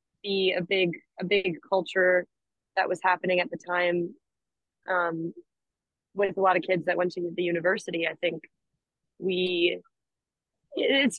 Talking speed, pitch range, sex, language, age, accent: 145 wpm, 175-195 Hz, female, English, 20-39, American